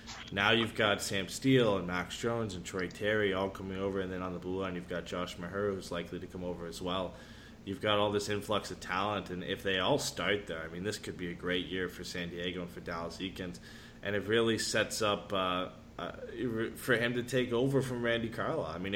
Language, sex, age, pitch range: English, male, 20-39, 90-105 Hz